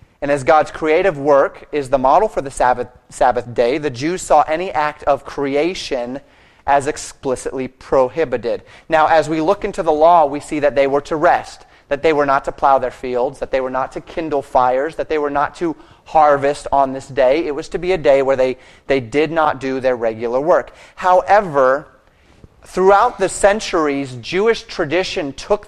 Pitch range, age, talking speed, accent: 130-170 Hz, 30-49, 195 wpm, American